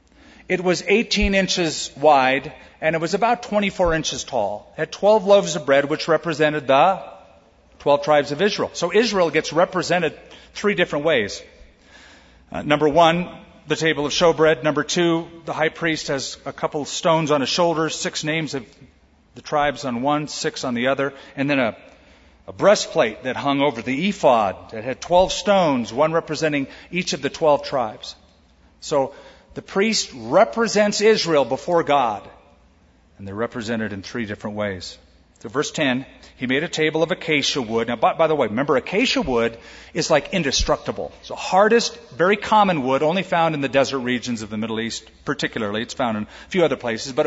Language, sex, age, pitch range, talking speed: English, male, 40-59, 110-165 Hz, 185 wpm